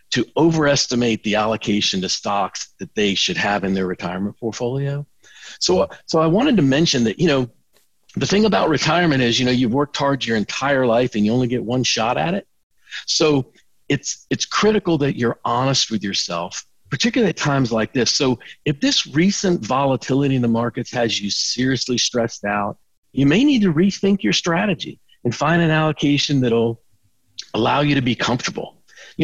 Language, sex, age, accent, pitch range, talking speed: English, male, 50-69, American, 120-160 Hz, 185 wpm